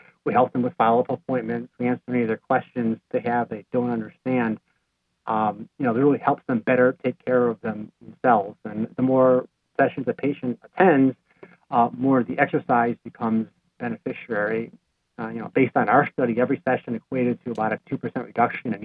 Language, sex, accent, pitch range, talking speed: English, male, American, 115-130 Hz, 190 wpm